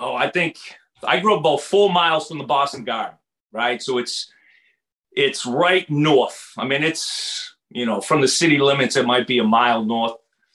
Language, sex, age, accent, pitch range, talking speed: English, male, 40-59, American, 135-185 Hz, 195 wpm